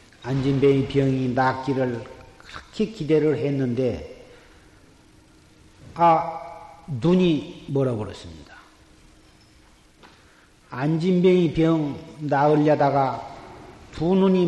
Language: Korean